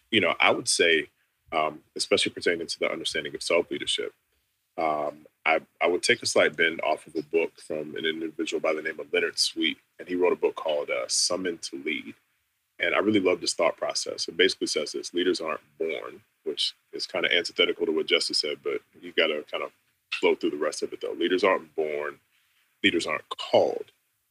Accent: American